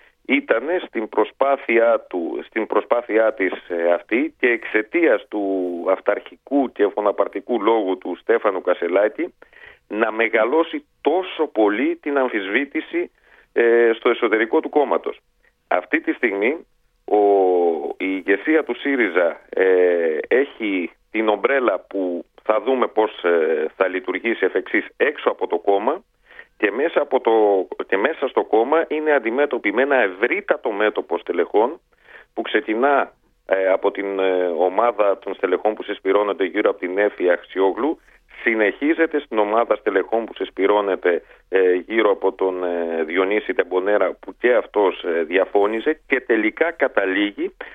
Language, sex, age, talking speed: Greek, male, 40-59, 120 wpm